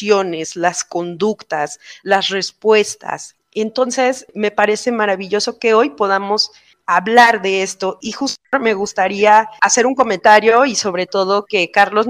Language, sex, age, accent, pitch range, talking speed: Spanish, female, 30-49, Mexican, 190-230 Hz, 130 wpm